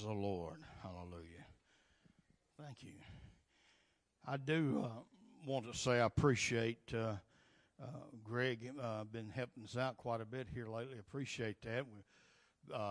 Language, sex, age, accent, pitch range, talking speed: English, male, 60-79, American, 110-135 Hz, 135 wpm